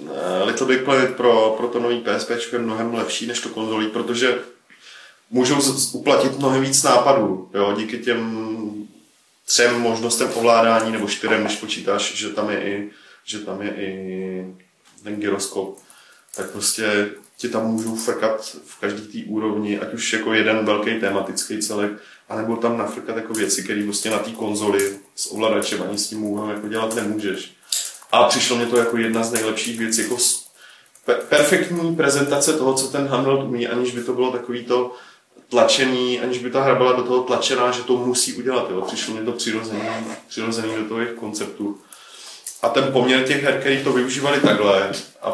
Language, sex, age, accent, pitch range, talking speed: Czech, male, 30-49, native, 105-120 Hz, 175 wpm